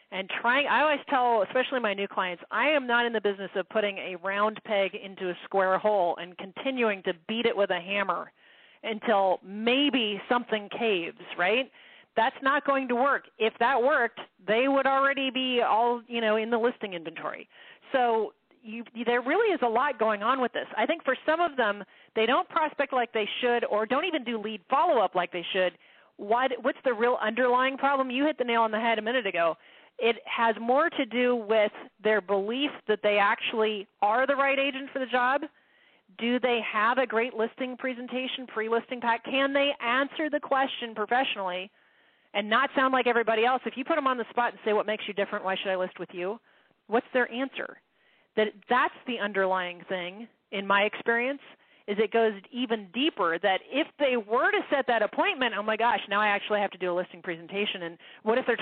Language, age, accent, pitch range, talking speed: English, 40-59, American, 205-260 Hz, 205 wpm